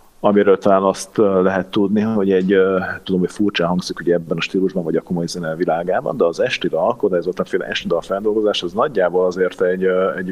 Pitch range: 85-105 Hz